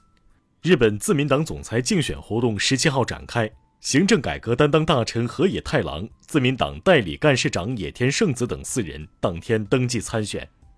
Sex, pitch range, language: male, 105-145 Hz, Chinese